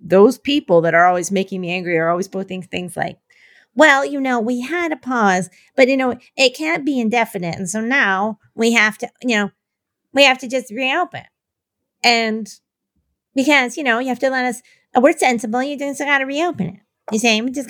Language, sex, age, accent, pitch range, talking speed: English, female, 40-59, American, 210-280 Hz, 210 wpm